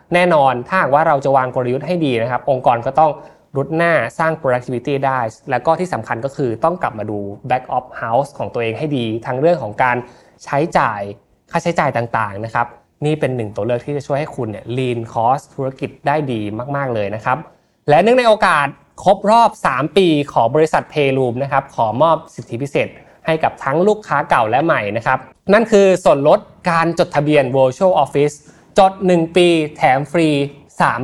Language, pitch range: Thai, 125-170 Hz